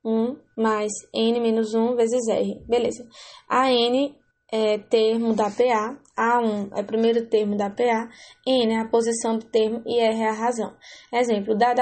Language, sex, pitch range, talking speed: English, female, 215-240 Hz, 175 wpm